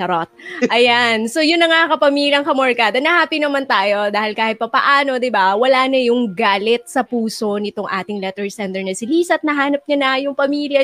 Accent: native